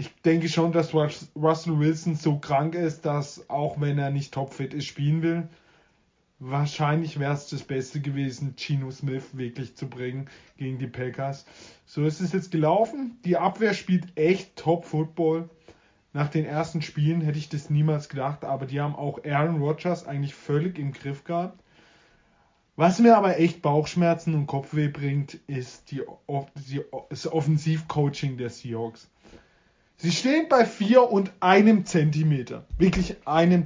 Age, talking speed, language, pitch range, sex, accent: 20-39, 155 wpm, German, 145-180 Hz, male, German